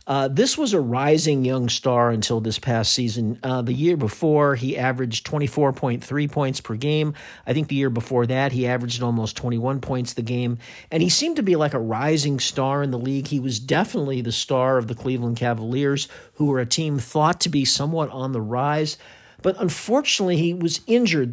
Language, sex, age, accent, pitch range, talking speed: English, male, 50-69, American, 125-160 Hz, 200 wpm